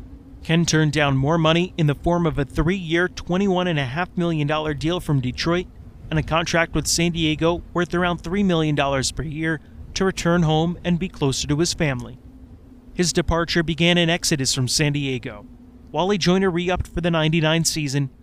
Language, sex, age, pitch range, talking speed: English, male, 30-49, 145-175 Hz, 170 wpm